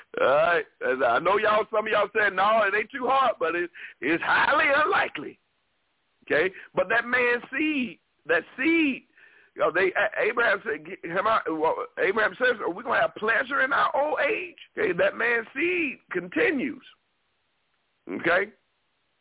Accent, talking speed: American, 165 wpm